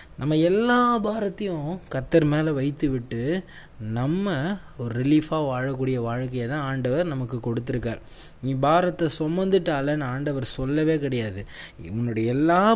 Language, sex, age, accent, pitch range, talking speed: Tamil, male, 20-39, native, 125-165 Hz, 115 wpm